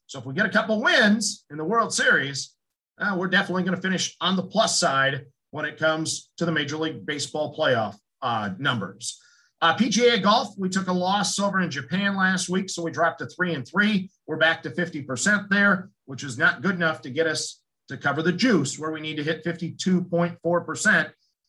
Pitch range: 155-195 Hz